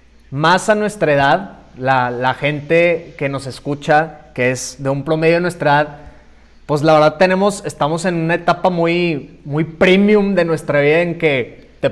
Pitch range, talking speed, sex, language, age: 150-180 Hz, 175 wpm, male, Spanish, 30-49